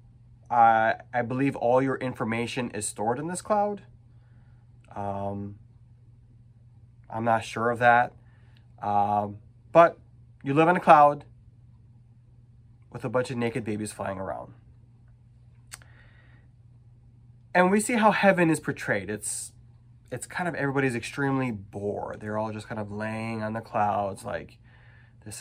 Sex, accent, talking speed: male, American, 135 wpm